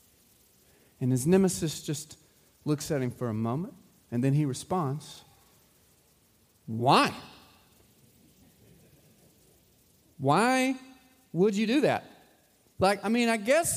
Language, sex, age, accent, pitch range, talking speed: English, male, 30-49, American, 190-275 Hz, 110 wpm